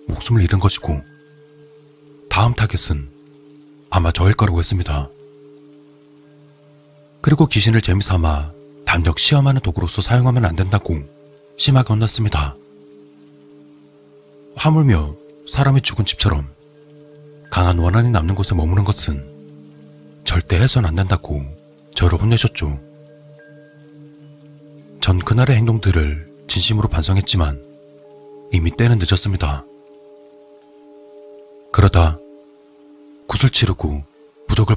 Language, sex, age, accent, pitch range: Korean, male, 30-49, native, 95-145 Hz